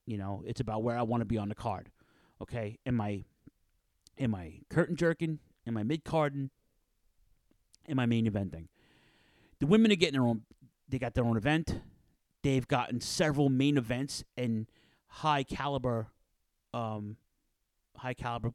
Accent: American